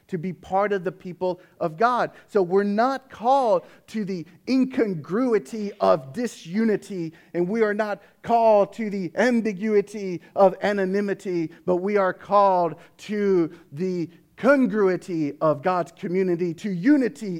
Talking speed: 135 wpm